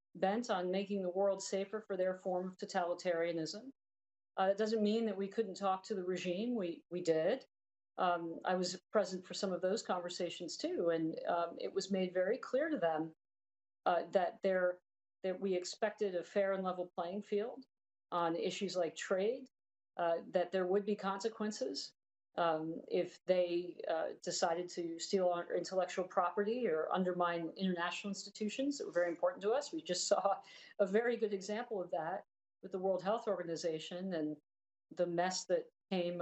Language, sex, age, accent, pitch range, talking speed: English, female, 50-69, American, 175-205 Hz, 170 wpm